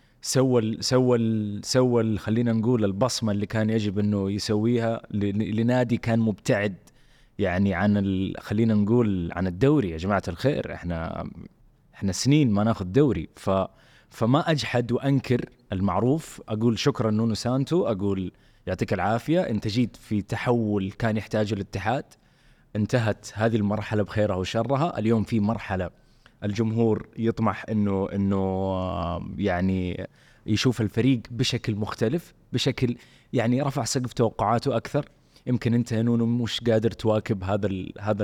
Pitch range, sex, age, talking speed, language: 100-125 Hz, male, 20-39, 120 wpm, Arabic